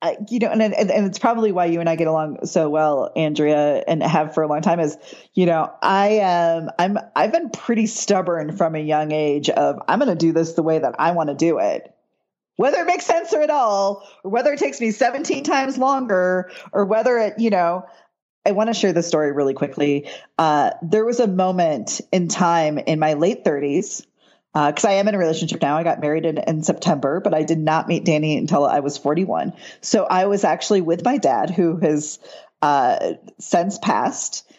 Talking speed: 215 wpm